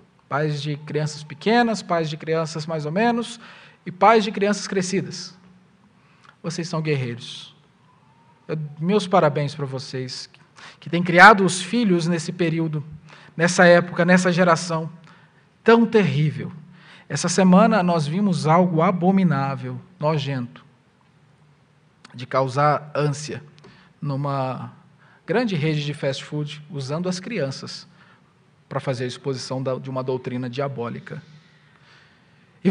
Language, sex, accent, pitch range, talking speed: Portuguese, male, Brazilian, 150-210 Hz, 115 wpm